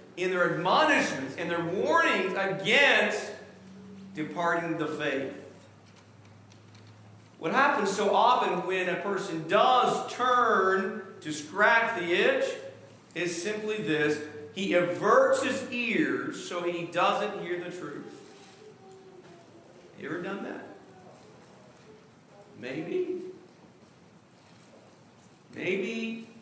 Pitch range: 175-240 Hz